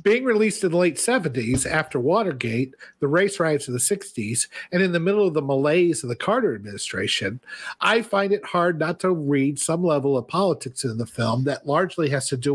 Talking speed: 210 wpm